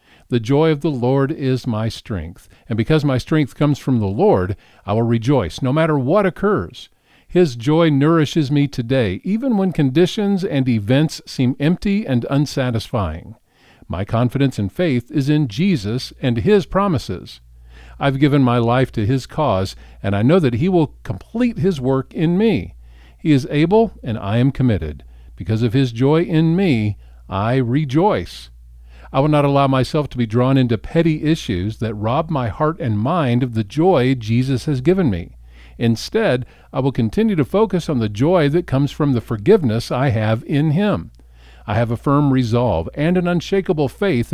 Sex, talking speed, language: male, 180 wpm, English